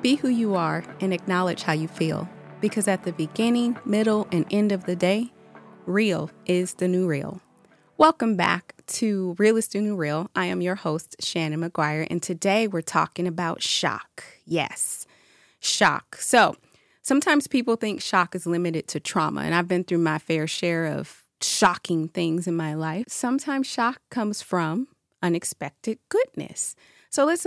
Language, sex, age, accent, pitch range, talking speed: English, female, 30-49, American, 165-215 Hz, 165 wpm